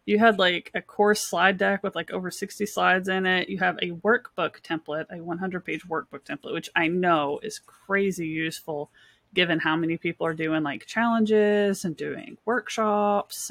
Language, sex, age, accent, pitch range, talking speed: English, female, 20-39, American, 160-215 Hz, 180 wpm